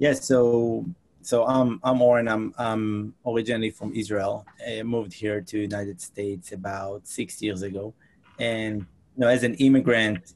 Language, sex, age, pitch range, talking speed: English, male, 30-49, 105-115 Hz, 170 wpm